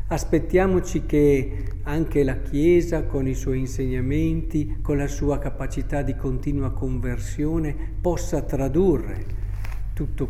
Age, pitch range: 50-69, 100-150 Hz